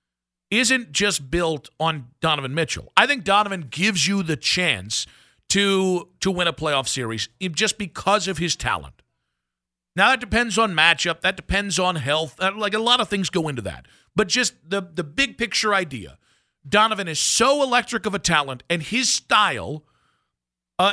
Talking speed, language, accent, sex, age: 165 wpm, English, American, male, 50-69